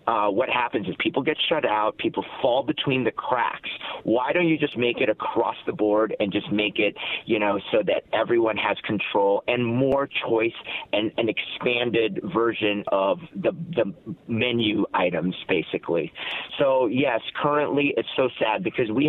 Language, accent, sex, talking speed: English, American, male, 170 wpm